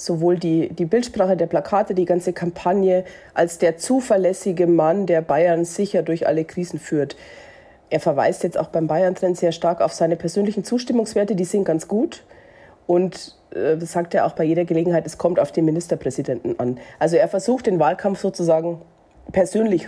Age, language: 40-59, German